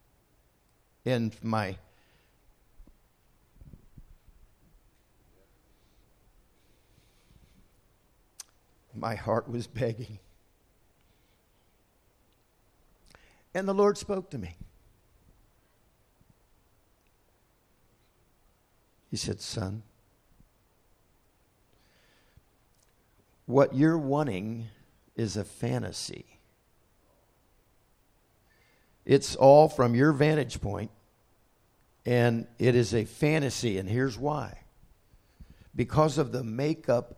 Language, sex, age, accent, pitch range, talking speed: English, male, 60-79, American, 105-140 Hz, 65 wpm